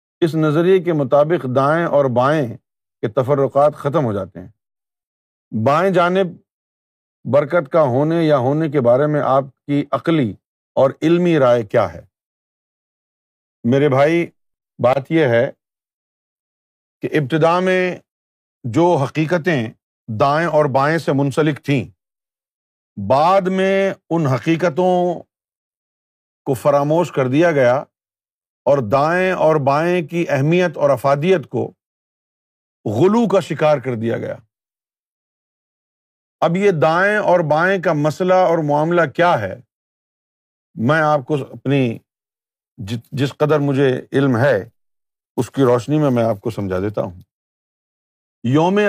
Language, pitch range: Urdu, 120-170 Hz